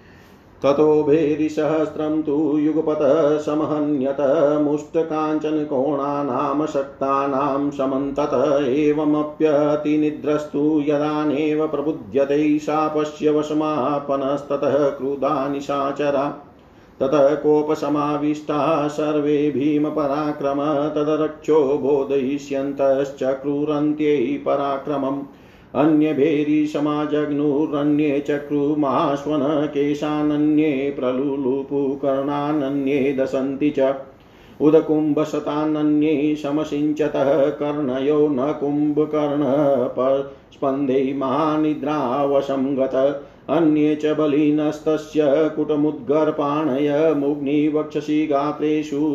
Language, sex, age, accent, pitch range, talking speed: Hindi, male, 40-59, native, 140-150 Hz, 55 wpm